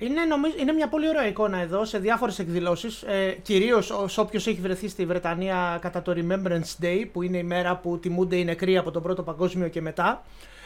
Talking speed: 190 wpm